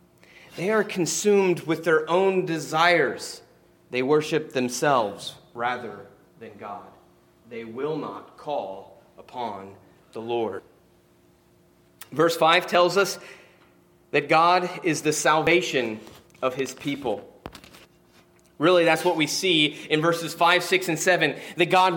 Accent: American